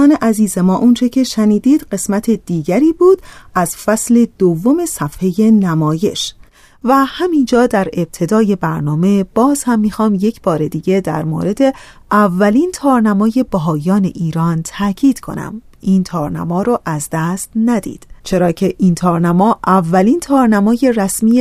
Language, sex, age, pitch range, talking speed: Persian, female, 30-49, 175-240 Hz, 125 wpm